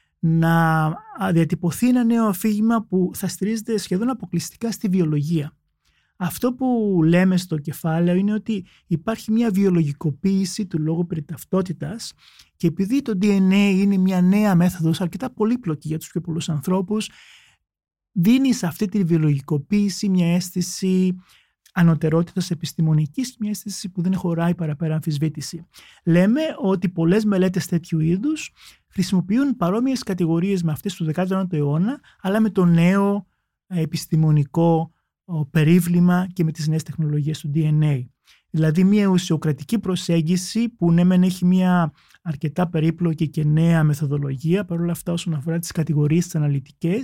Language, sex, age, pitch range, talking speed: Greek, male, 30-49, 160-195 Hz, 130 wpm